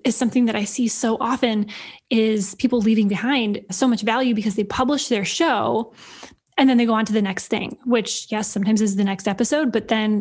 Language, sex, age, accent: English, female, 10-29, American